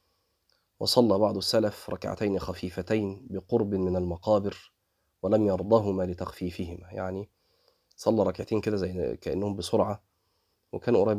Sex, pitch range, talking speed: male, 90-110 Hz, 105 wpm